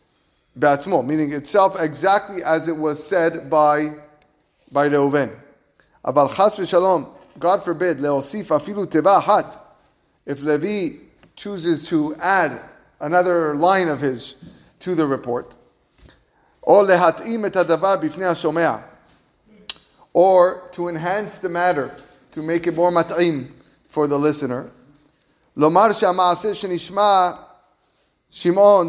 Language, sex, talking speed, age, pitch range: English, male, 85 wpm, 30-49, 155-195 Hz